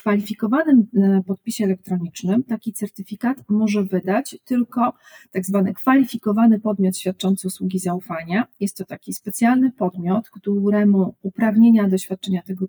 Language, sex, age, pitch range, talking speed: Polish, female, 40-59, 185-225 Hz, 125 wpm